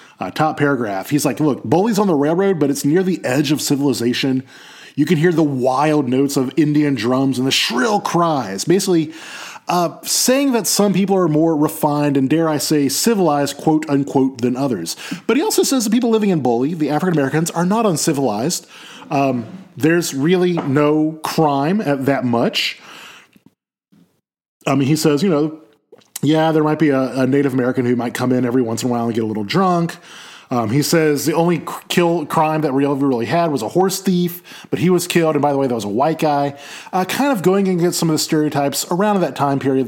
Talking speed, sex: 210 wpm, male